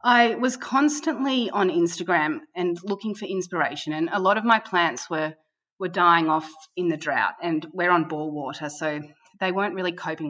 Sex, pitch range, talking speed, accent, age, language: female, 155-195 Hz, 185 wpm, Australian, 30-49, English